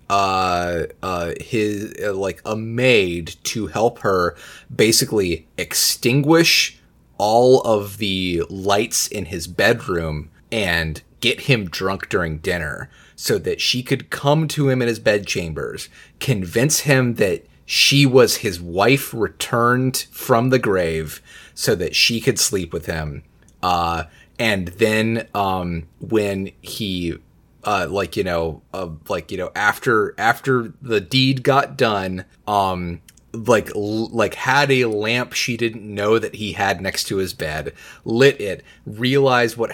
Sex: male